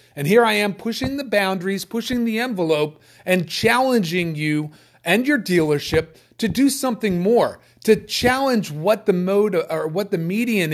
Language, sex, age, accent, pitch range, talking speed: English, male, 40-59, American, 140-195 Hz, 160 wpm